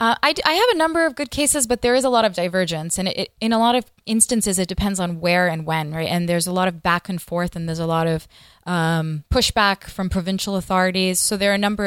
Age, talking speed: 20-39, 260 wpm